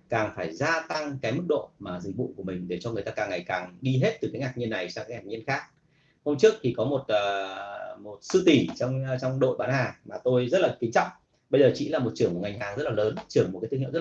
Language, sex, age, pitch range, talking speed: Vietnamese, male, 30-49, 110-145 Hz, 295 wpm